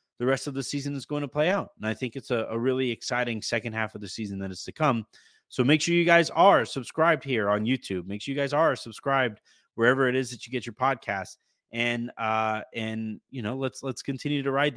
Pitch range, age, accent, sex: 105-135 Hz, 30-49, American, male